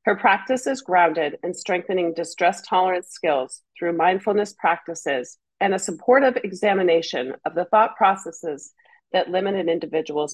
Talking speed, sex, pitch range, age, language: 140 wpm, female, 170-225 Hz, 40-59, English